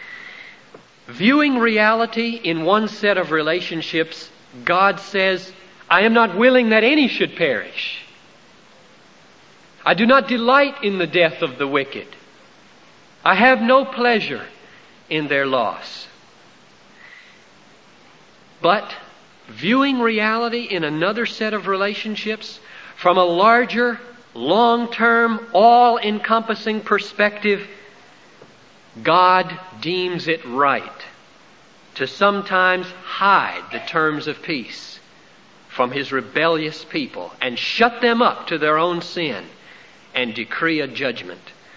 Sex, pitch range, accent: male, 155-225 Hz, American